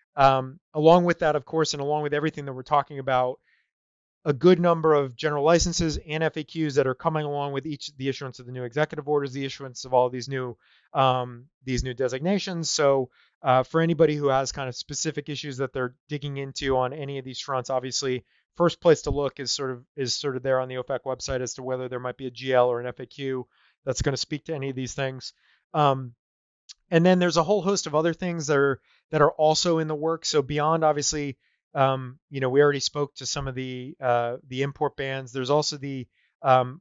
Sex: male